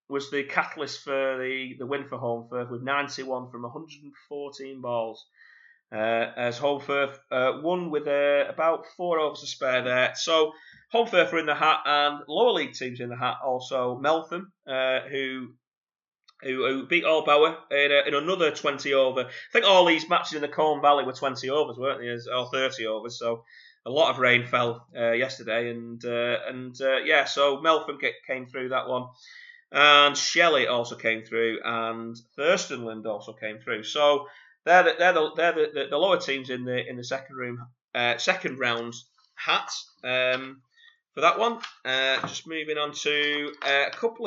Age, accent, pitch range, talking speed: 30-49, British, 120-155 Hz, 185 wpm